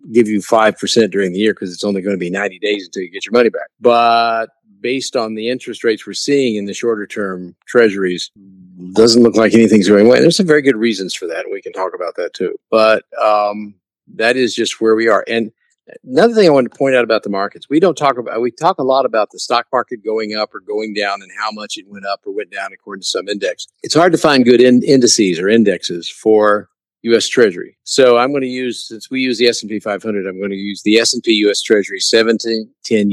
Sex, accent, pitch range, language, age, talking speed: male, American, 105-140 Hz, English, 50-69, 245 wpm